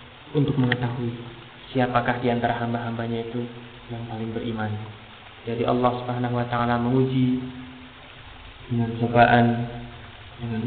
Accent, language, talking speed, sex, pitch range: native, Indonesian, 100 wpm, male, 120-135 Hz